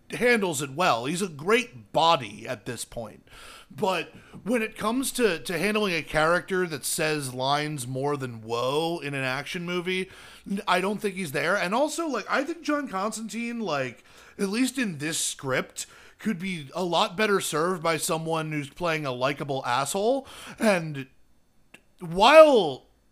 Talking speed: 160 wpm